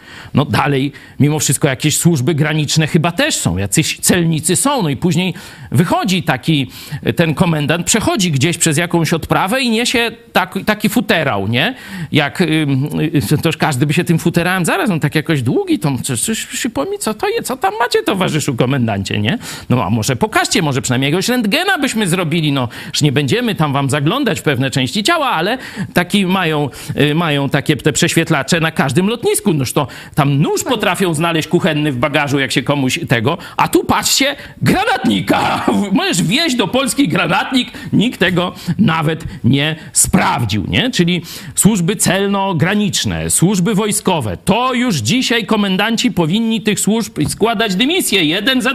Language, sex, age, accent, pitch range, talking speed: Polish, male, 50-69, native, 145-215 Hz, 160 wpm